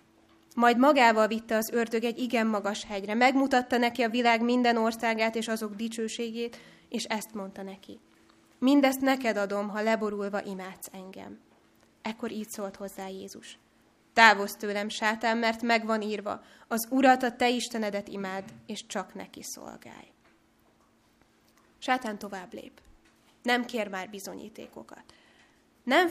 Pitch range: 205-240 Hz